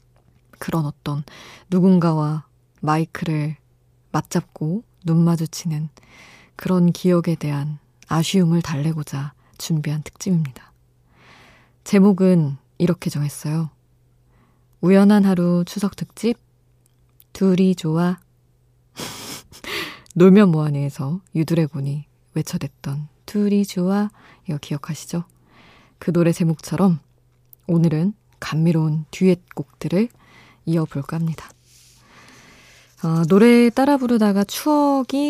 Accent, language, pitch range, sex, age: native, Korean, 145-185 Hz, female, 20-39